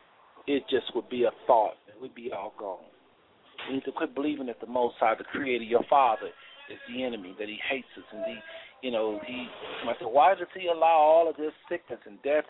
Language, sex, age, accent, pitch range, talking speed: English, male, 50-69, American, 125-160 Hz, 230 wpm